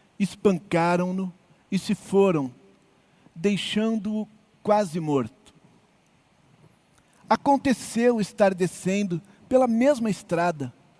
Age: 50-69